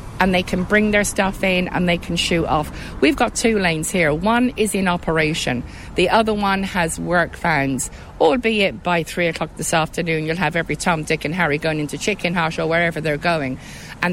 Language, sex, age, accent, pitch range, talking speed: English, female, 50-69, British, 160-235 Hz, 210 wpm